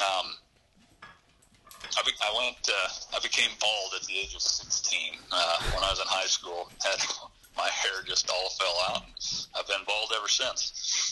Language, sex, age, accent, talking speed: English, male, 40-59, American, 175 wpm